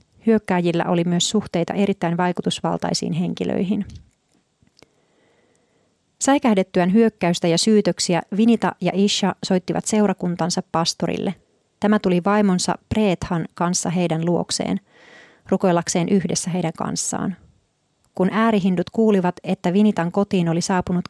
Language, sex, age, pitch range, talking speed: Finnish, female, 30-49, 175-205 Hz, 100 wpm